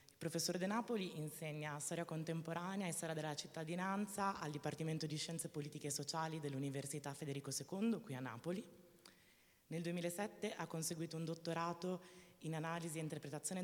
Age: 20-39